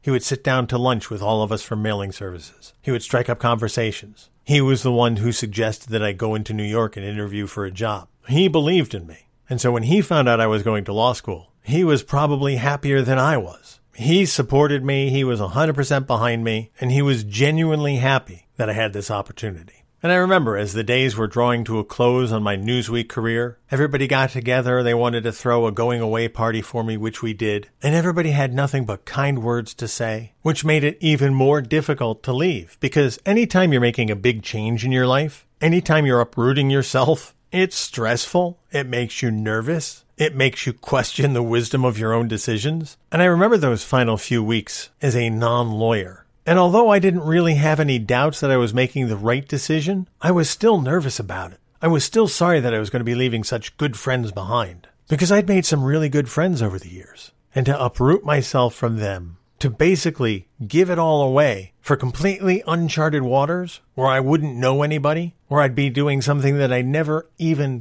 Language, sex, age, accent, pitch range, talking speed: English, male, 50-69, American, 115-150 Hz, 210 wpm